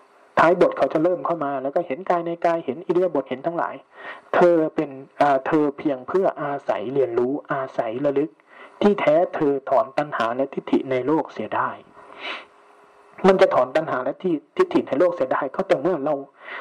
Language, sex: Thai, male